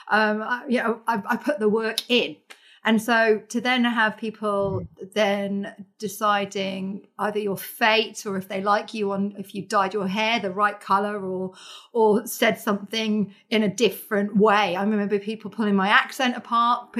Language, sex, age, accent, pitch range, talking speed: English, female, 30-49, British, 200-230 Hz, 175 wpm